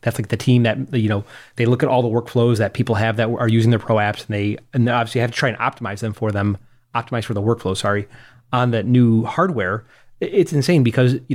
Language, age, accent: English, 30-49, American